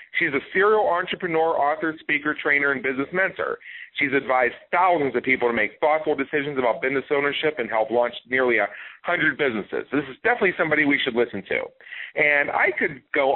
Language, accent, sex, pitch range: English, American, male, 130-170 Hz